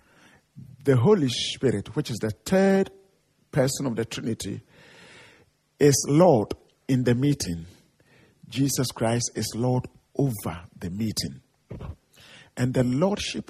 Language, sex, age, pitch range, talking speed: Danish, male, 50-69, 110-145 Hz, 115 wpm